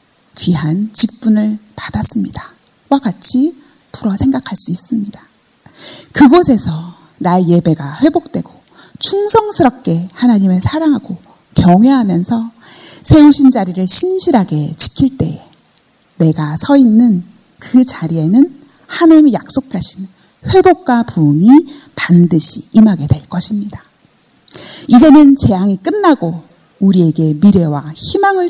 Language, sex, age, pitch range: Korean, female, 40-59, 175-270 Hz